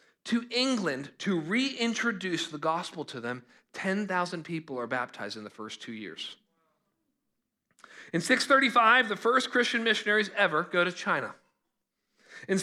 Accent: American